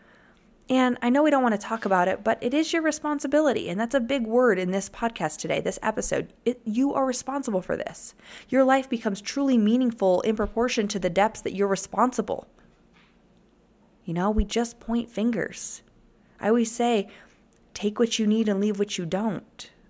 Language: English